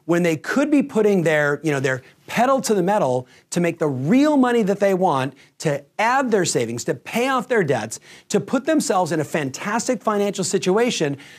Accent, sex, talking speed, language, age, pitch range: American, male, 200 wpm, English, 40-59, 140-215 Hz